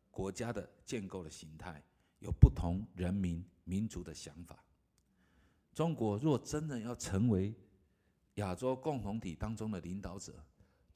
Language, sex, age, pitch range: Chinese, male, 50-69, 85-110 Hz